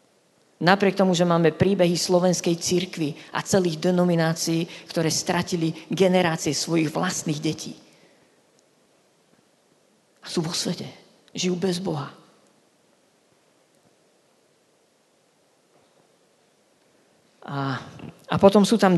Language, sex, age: Slovak, female, 40-59